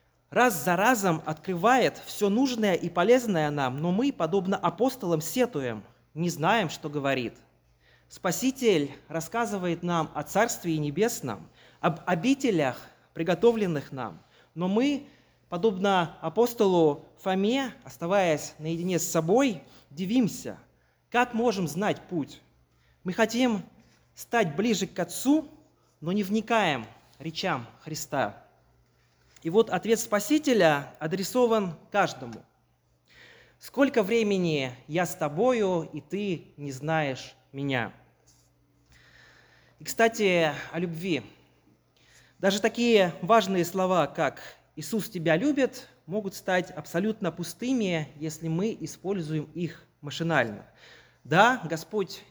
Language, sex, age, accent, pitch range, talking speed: Russian, male, 30-49, native, 150-215 Hz, 105 wpm